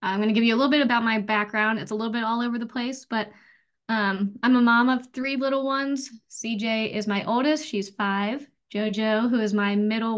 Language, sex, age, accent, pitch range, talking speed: English, female, 10-29, American, 215-260 Hz, 230 wpm